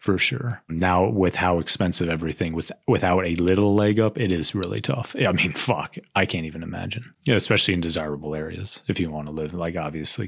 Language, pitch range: English, 85-105 Hz